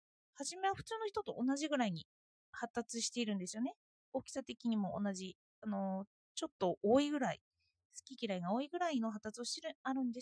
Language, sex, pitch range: Japanese, female, 230-340 Hz